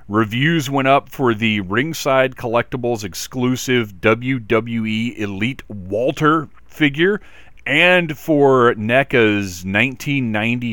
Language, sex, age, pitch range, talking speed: English, male, 40-59, 100-130 Hz, 90 wpm